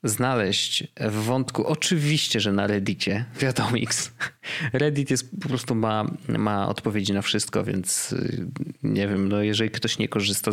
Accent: native